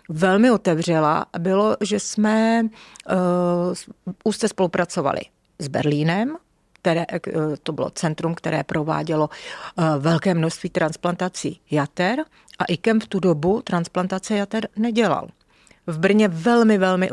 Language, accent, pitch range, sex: Czech, native, 165-200 Hz, female